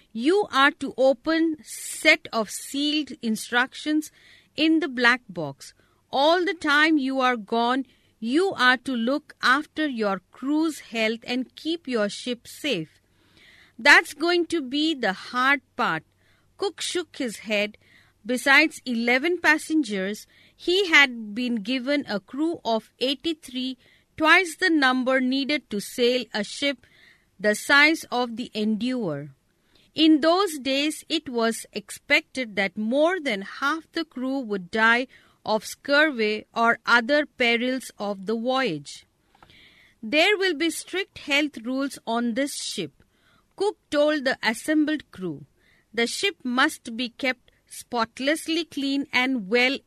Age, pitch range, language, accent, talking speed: 50-69, 230-305 Hz, English, Indian, 135 wpm